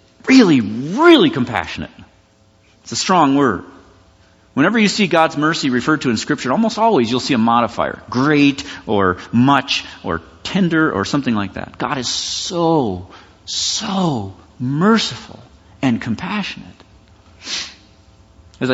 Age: 40-59